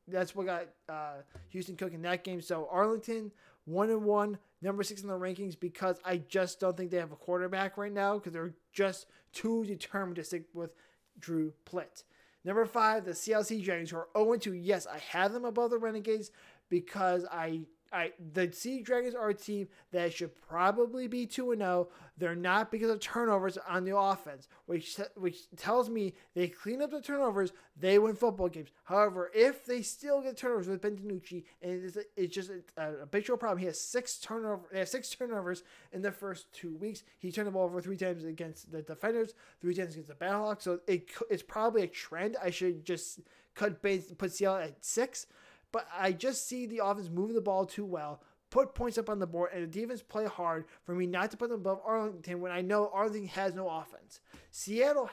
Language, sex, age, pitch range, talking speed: English, male, 20-39, 175-210 Hz, 210 wpm